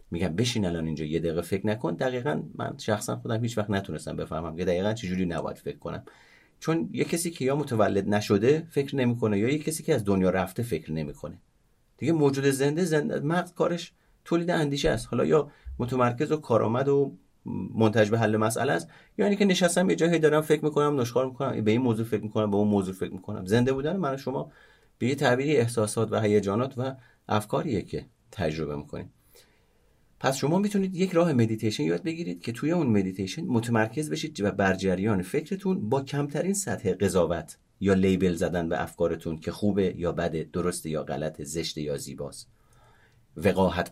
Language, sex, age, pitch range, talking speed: Persian, male, 30-49, 95-145 Hz, 185 wpm